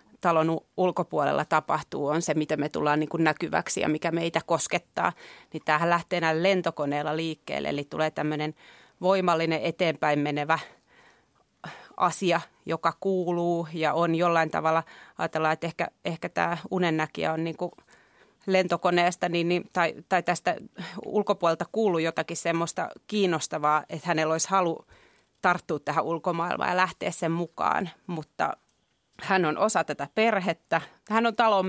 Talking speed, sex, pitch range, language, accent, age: 135 wpm, female, 160-185 Hz, Finnish, native, 30-49